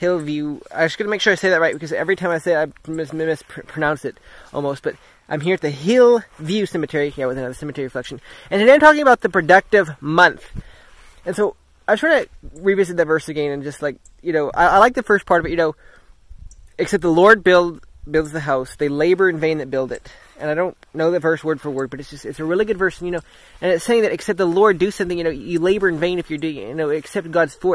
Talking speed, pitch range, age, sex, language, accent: 265 wpm, 160-215 Hz, 20-39, male, English, American